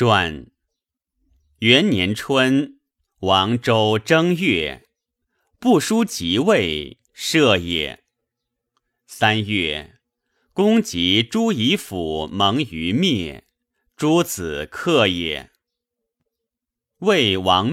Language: Chinese